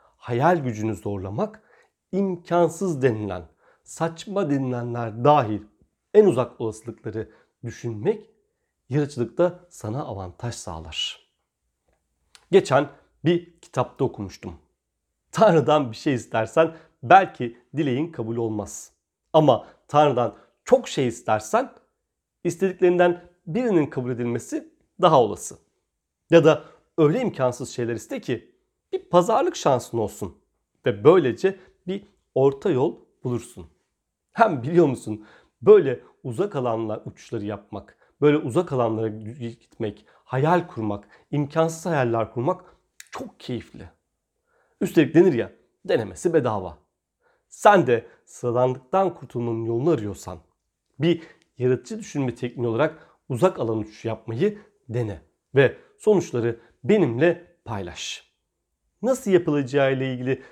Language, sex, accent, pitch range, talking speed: Turkish, male, native, 115-175 Hz, 105 wpm